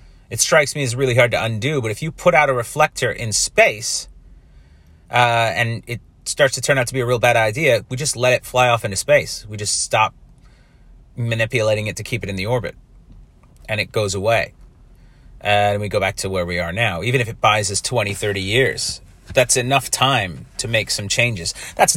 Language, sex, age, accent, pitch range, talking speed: English, male, 30-49, American, 115-160 Hz, 215 wpm